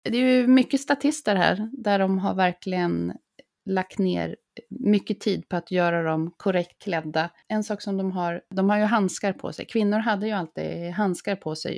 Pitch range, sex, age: 170-215 Hz, female, 30-49